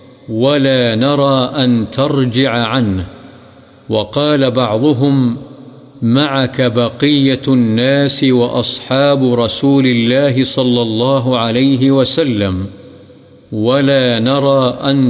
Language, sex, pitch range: Urdu, male, 120-135 Hz